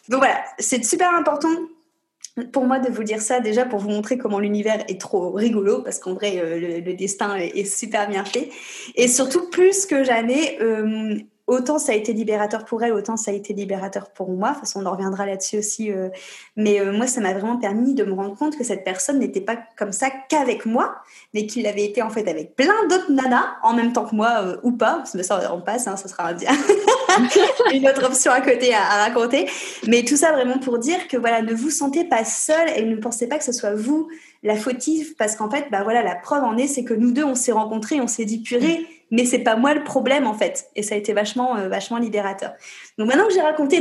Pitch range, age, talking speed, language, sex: 210-275 Hz, 20-39, 245 wpm, French, female